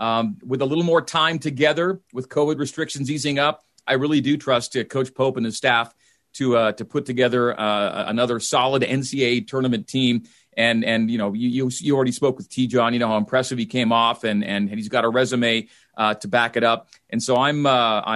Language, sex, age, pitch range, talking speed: English, male, 40-59, 120-155 Hz, 215 wpm